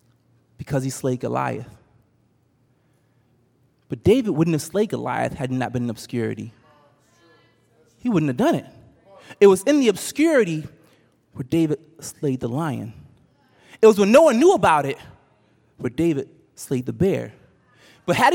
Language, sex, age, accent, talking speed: English, male, 20-39, American, 145 wpm